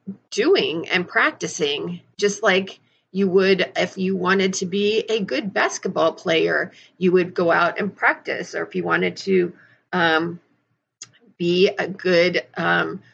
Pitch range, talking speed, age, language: 175-210 Hz, 145 wpm, 40-59, English